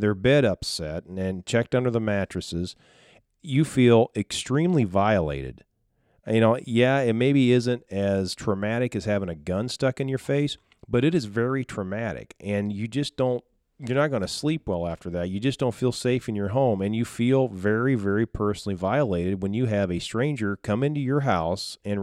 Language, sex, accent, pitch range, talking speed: English, male, American, 100-130 Hz, 190 wpm